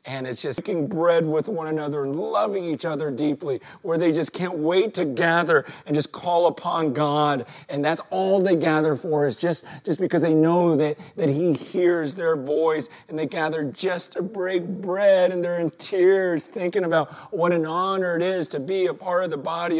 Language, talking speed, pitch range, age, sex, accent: English, 205 wpm, 165-215 Hz, 40-59, male, American